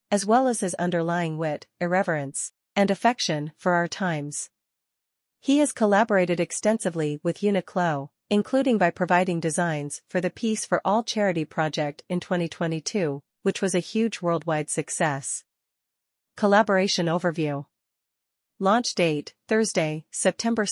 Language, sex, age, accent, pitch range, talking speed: English, female, 40-59, American, 165-205 Hz, 125 wpm